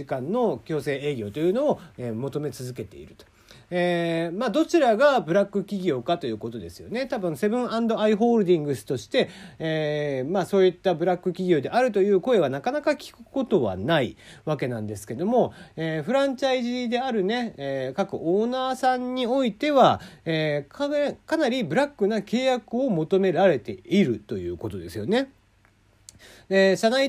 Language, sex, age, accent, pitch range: Japanese, male, 40-59, native, 145-225 Hz